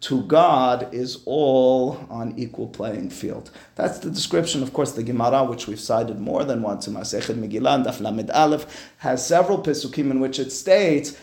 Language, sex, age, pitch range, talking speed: English, male, 30-49, 115-150 Hz, 175 wpm